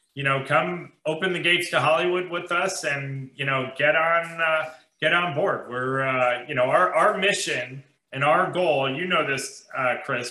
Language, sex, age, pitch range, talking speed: English, male, 30-49, 130-160 Hz, 200 wpm